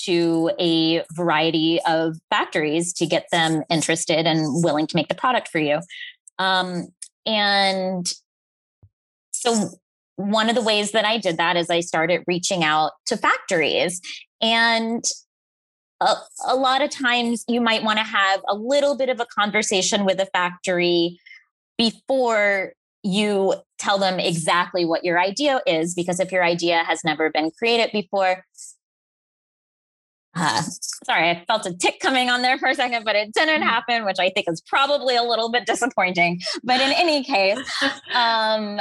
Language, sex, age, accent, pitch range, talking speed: English, female, 20-39, American, 170-230 Hz, 160 wpm